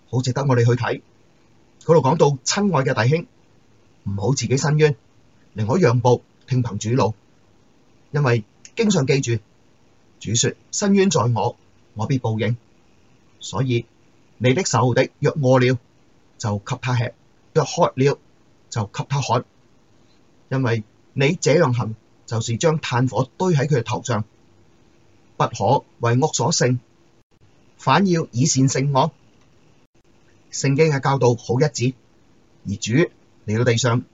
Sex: male